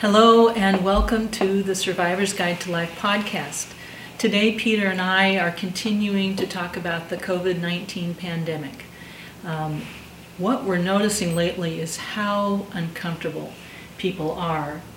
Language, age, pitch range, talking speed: English, 50-69, 170-195 Hz, 130 wpm